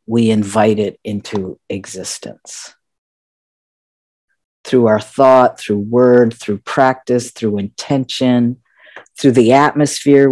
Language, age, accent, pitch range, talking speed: English, 50-69, American, 100-130 Hz, 100 wpm